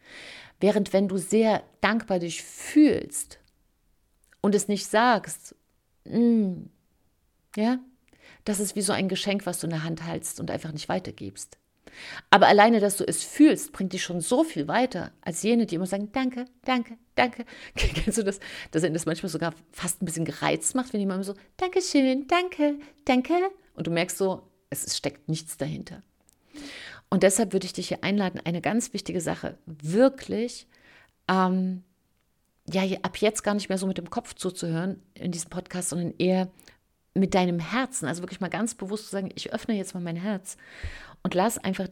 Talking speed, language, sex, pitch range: 180 wpm, German, female, 170-220 Hz